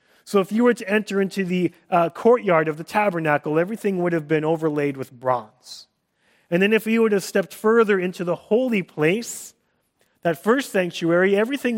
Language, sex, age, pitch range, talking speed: English, male, 30-49, 150-205 Hz, 185 wpm